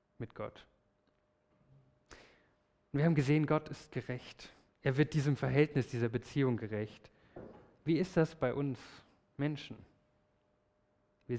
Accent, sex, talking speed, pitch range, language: German, male, 115 wpm, 115-145 Hz, German